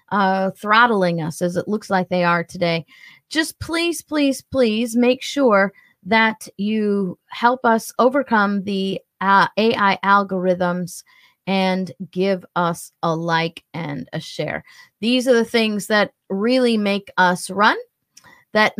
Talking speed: 135 wpm